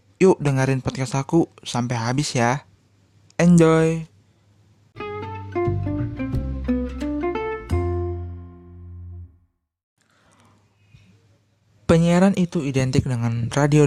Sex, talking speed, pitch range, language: male, 55 wpm, 110-150 Hz, Indonesian